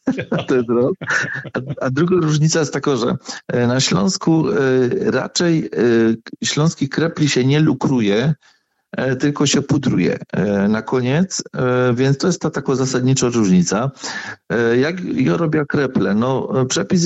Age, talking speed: 40-59, 115 wpm